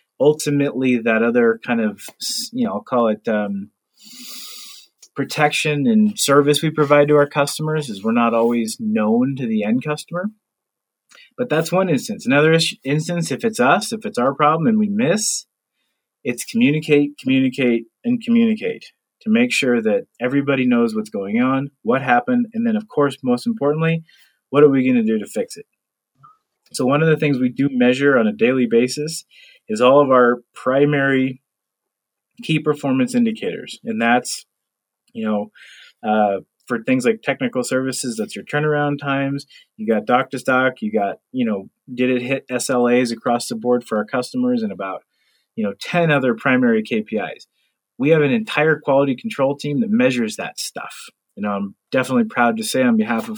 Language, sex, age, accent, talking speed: English, male, 30-49, American, 175 wpm